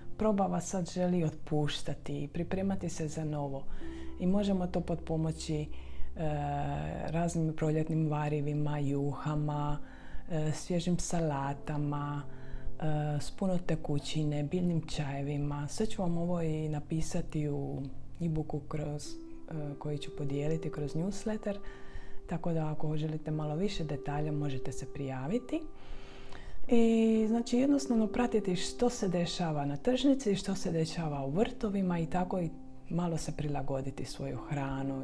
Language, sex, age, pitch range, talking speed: Croatian, female, 30-49, 145-180 Hz, 120 wpm